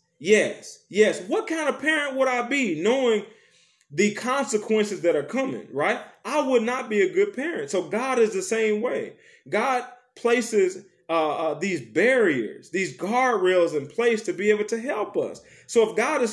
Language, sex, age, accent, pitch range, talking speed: English, male, 20-39, American, 205-250 Hz, 180 wpm